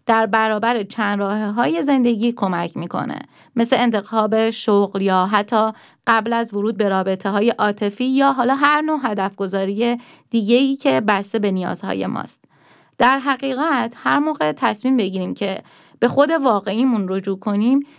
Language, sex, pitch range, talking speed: Persian, female, 205-260 Hz, 145 wpm